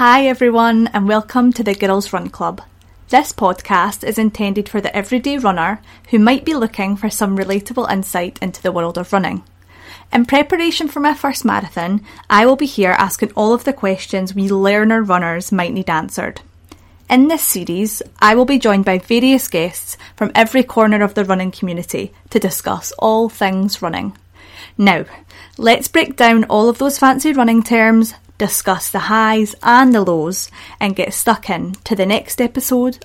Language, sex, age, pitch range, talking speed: English, female, 30-49, 190-245 Hz, 175 wpm